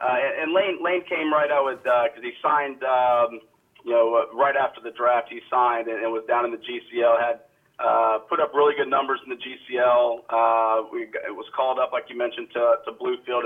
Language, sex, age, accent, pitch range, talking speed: English, male, 40-59, American, 115-140 Hz, 225 wpm